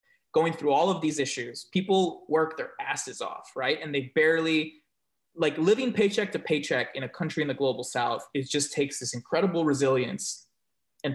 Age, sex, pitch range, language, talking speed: 20-39, male, 140-190 Hz, English, 185 wpm